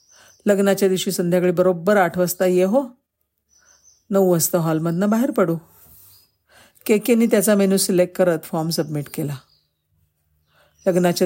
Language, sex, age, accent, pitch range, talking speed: Marathi, female, 50-69, native, 150-195 Hz, 110 wpm